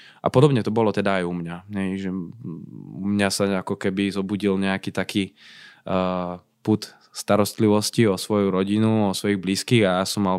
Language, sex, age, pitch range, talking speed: Slovak, male, 20-39, 95-110 Hz, 180 wpm